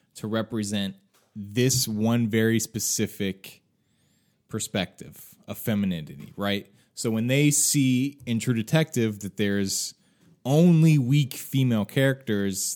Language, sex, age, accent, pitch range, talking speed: English, male, 20-39, American, 100-135 Hz, 110 wpm